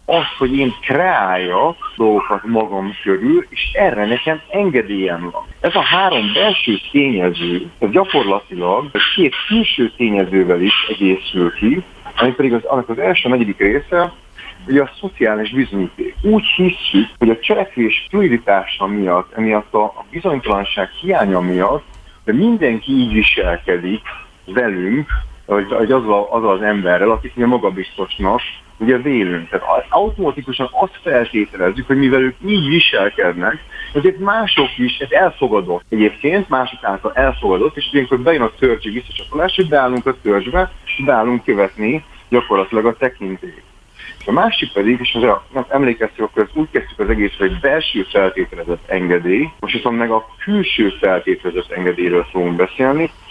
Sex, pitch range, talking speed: male, 100-145 Hz, 140 wpm